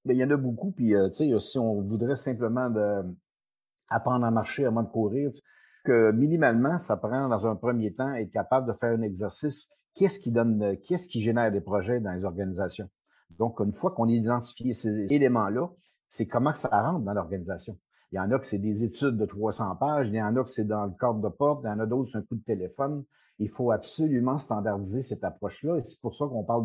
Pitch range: 105-140 Hz